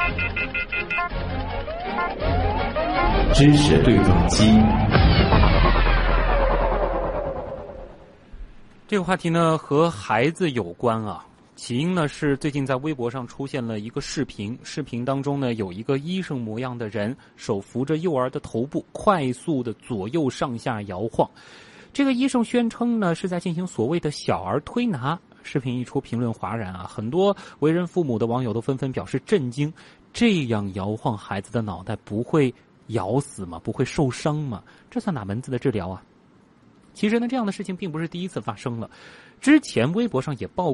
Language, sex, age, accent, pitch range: Chinese, male, 30-49, native, 115-170 Hz